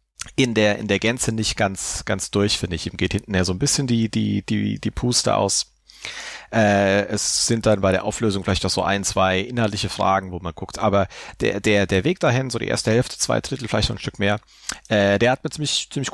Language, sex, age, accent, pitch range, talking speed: German, male, 30-49, German, 85-110 Hz, 240 wpm